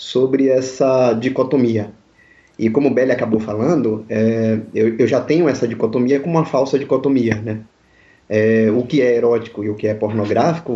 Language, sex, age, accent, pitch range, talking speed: Portuguese, male, 20-39, Brazilian, 115-150 Hz, 175 wpm